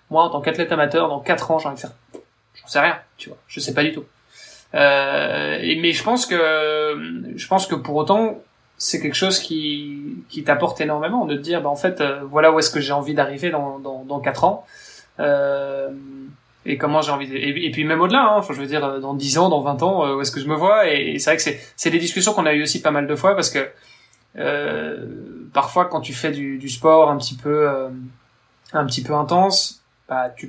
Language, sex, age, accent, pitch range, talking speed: French, male, 20-39, French, 140-165 Hz, 250 wpm